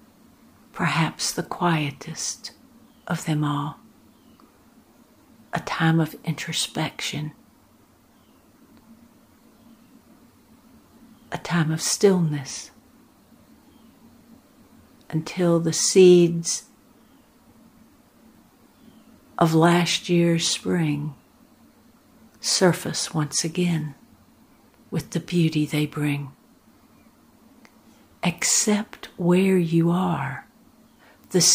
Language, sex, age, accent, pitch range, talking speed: English, female, 60-79, American, 165-240 Hz, 65 wpm